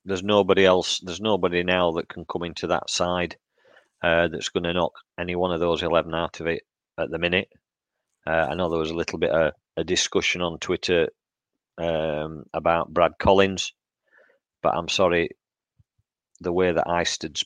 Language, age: English, 40-59